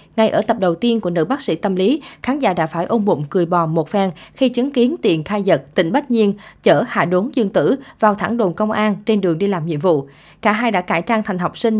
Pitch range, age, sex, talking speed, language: 180-230 Hz, 20-39, female, 275 wpm, Vietnamese